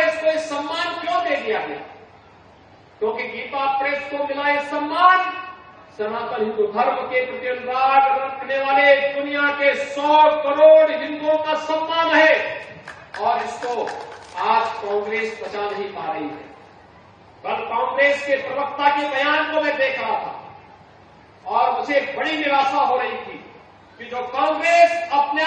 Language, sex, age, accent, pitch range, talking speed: Hindi, male, 50-69, native, 260-325 Hz, 130 wpm